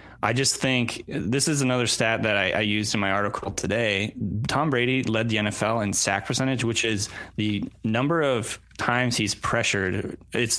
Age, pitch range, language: 20-39, 100-120 Hz, English